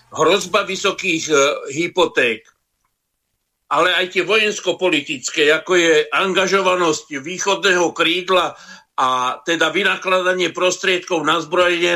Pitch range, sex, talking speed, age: 165-205 Hz, male, 90 wpm, 60-79